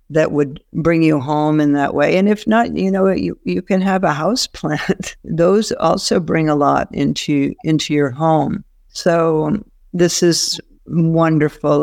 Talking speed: 170 wpm